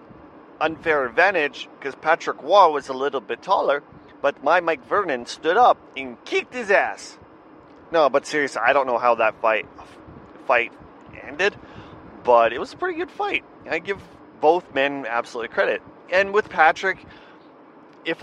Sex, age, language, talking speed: male, 30-49, English, 160 wpm